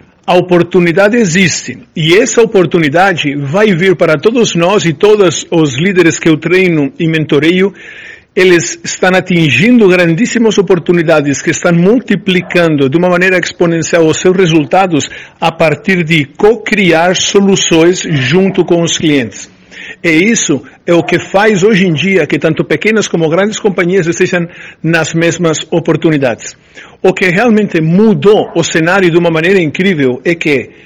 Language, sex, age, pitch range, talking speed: Portuguese, male, 50-69, 160-190 Hz, 145 wpm